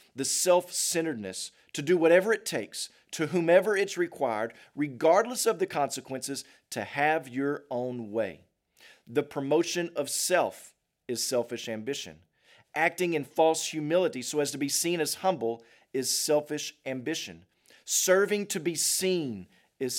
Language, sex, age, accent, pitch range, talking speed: English, male, 40-59, American, 130-175 Hz, 140 wpm